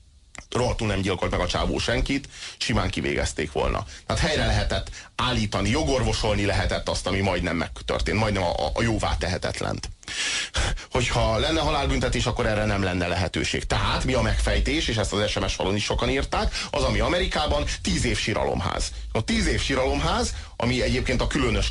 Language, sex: Hungarian, male